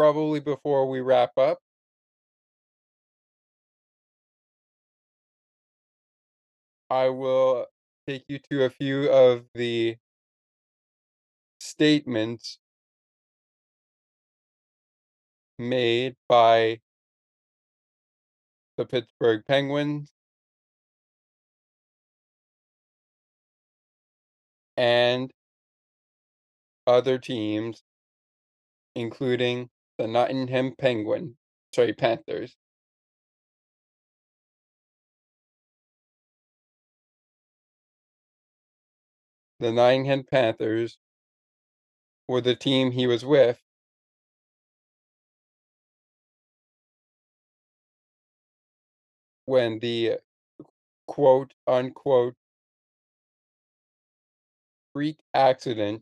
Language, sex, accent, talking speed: English, male, American, 45 wpm